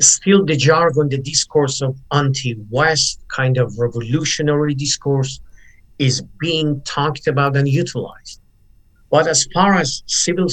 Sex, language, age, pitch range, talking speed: male, English, 50-69, 125-160 Hz, 125 wpm